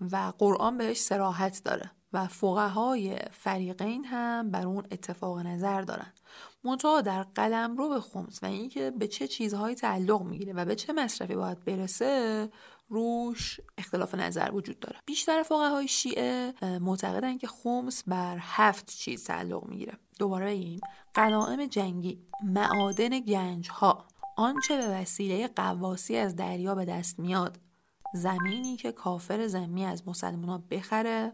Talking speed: 145 wpm